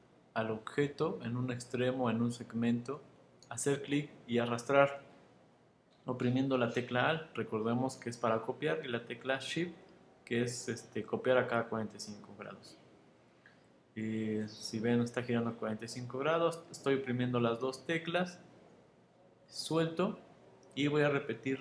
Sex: male